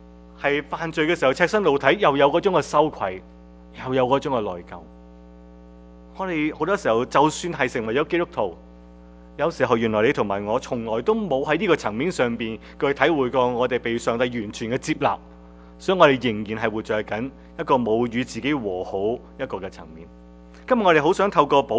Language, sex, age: English, male, 30-49